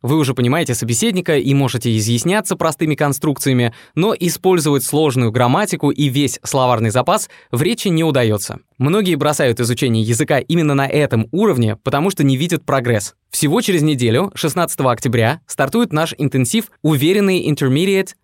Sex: male